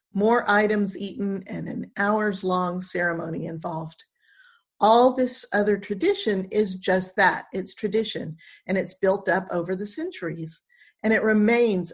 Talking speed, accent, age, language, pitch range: 135 wpm, American, 40-59, English, 175-230 Hz